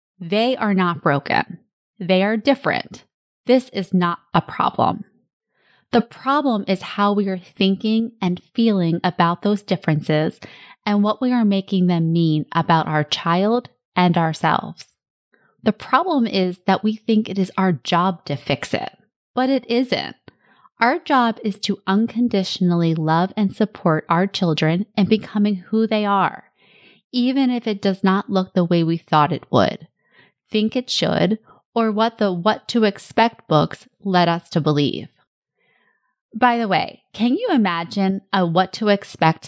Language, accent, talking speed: English, American, 150 wpm